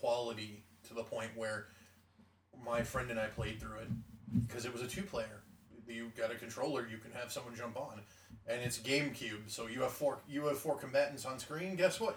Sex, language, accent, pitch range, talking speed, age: male, English, American, 115-135 Hz, 210 wpm, 30-49